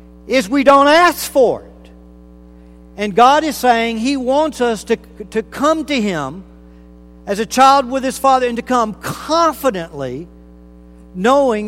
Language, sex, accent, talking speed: English, male, American, 150 wpm